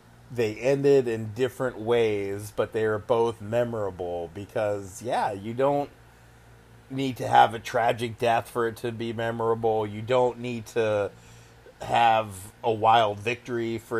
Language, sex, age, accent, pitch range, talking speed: English, male, 30-49, American, 110-125 Hz, 145 wpm